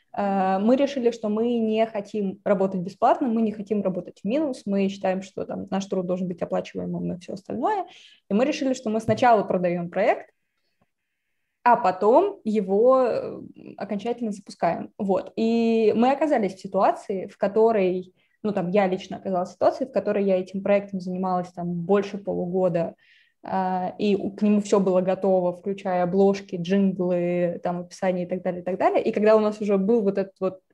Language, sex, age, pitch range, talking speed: Russian, female, 20-39, 185-220 Hz, 175 wpm